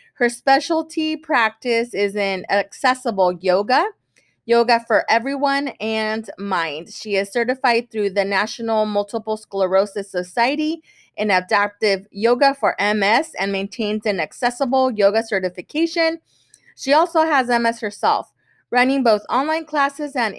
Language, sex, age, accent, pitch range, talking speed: English, female, 30-49, American, 200-260 Hz, 125 wpm